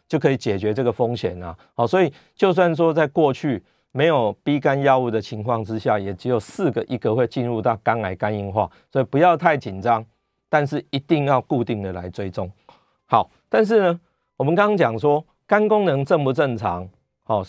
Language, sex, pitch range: Chinese, male, 105-140 Hz